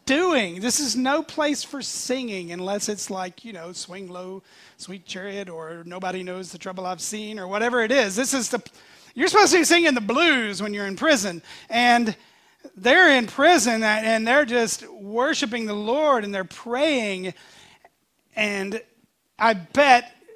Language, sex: English, male